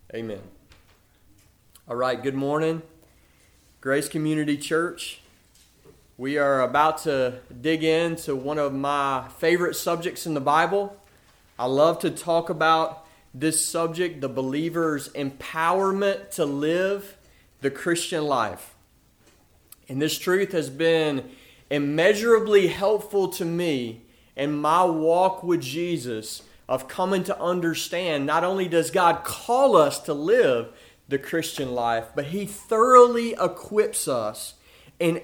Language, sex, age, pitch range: English, male, 30-49, 135-180 Hz